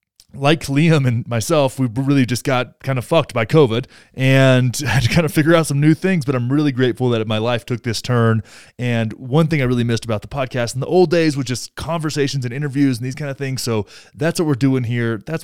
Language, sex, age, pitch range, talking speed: English, male, 20-39, 120-155 Hz, 245 wpm